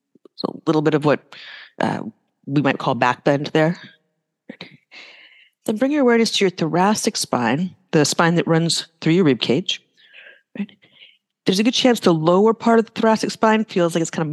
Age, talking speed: 40-59, 185 wpm